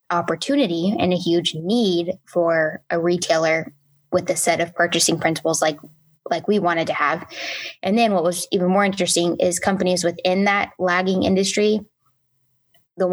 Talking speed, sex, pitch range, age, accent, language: 155 wpm, female, 170-195 Hz, 10-29, American, English